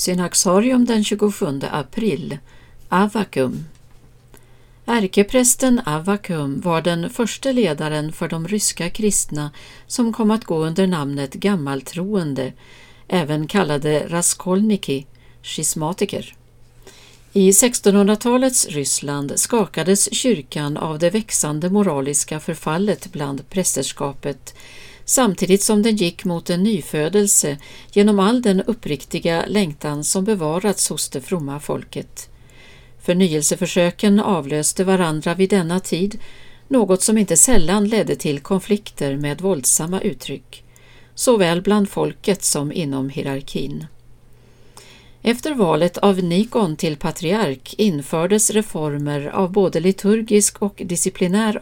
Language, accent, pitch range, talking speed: Swedish, native, 145-205 Hz, 105 wpm